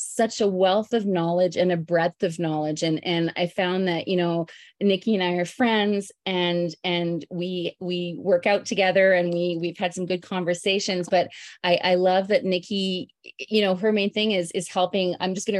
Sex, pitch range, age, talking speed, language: female, 175-200 Hz, 30-49, 205 wpm, English